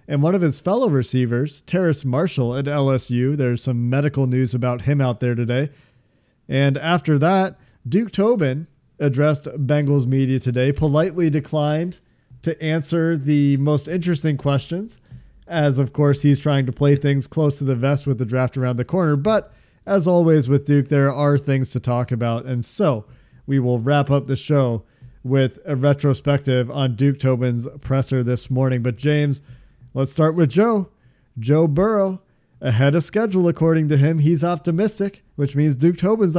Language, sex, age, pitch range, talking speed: English, male, 40-59, 130-165 Hz, 170 wpm